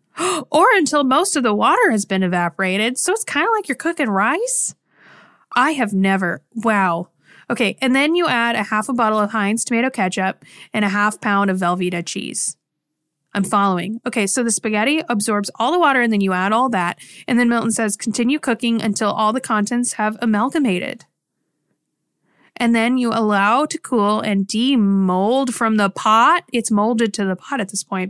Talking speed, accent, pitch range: 190 wpm, American, 200-260 Hz